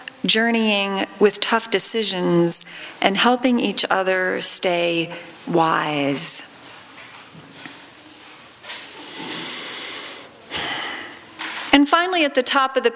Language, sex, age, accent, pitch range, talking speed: English, female, 40-59, American, 195-265 Hz, 80 wpm